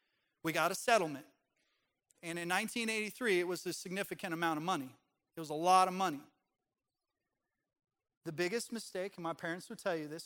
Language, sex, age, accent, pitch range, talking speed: English, male, 30-49, American, 145-175 Hz, 175 wpm